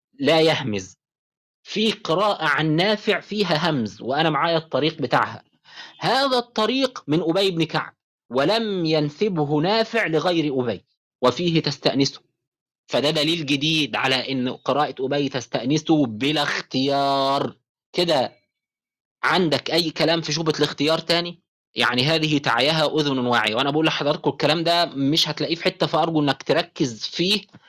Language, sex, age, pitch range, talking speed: Arabic, male, 30-49, 135-165 Hz, 130 wpm